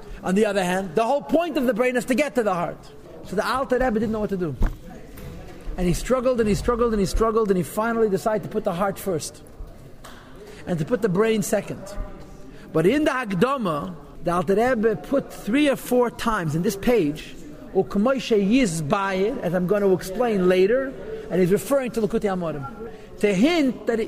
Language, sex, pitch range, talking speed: English, male, 185-245 Hz, 195 wpm